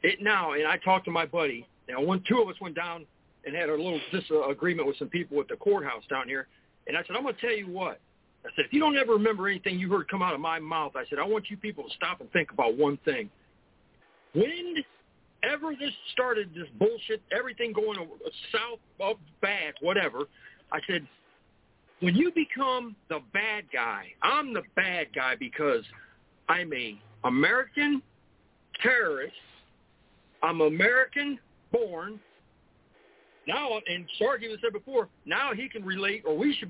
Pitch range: 175-255 Hz